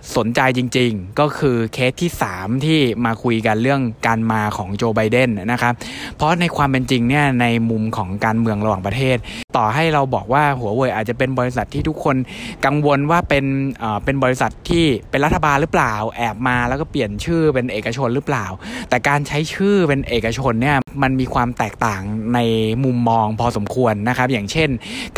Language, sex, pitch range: Thai, male, 115-145 Hz